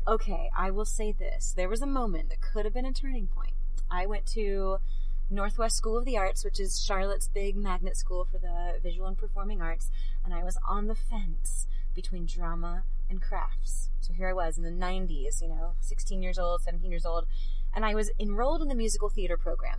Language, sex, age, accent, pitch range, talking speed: English, female, 30-49, American, 170-225 Hz, 210 wpm